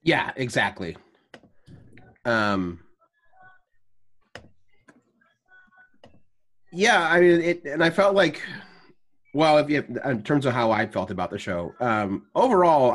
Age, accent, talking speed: 30-49, American, 110 wpm